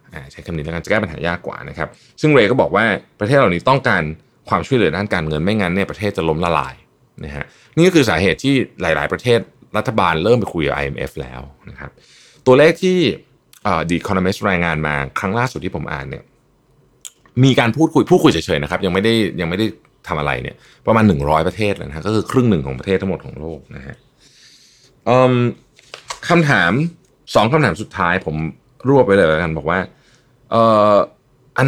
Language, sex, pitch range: Thai, male, 85-120 Hz